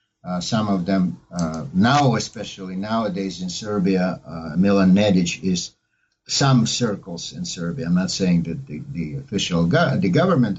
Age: 60-79